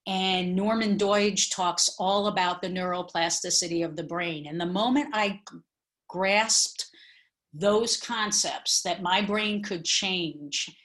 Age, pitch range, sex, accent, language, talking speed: 40-59, 175-210 Hz, female, American, English, 125 wpm